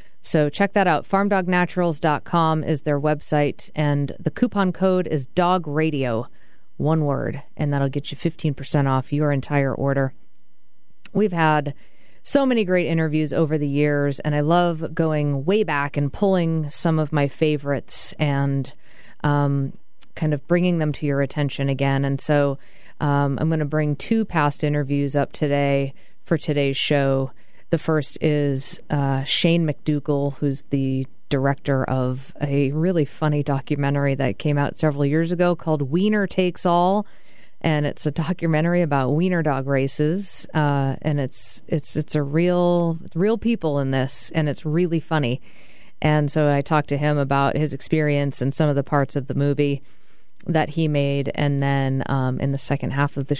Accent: American